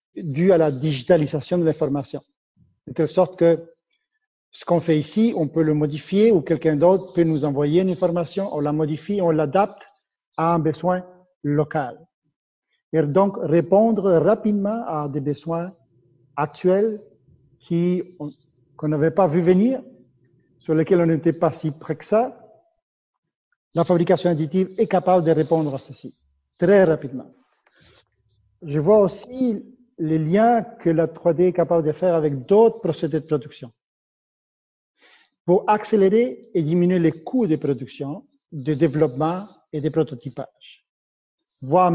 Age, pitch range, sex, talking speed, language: 50-69, 150-190 Hz, male, 145 wpm, French